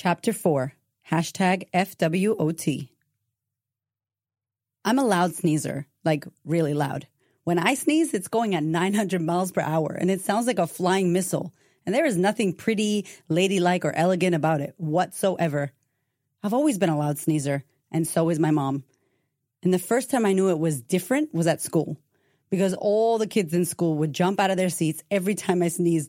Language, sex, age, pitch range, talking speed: English, female, 30-49, 150-195 Hz, 180 wpm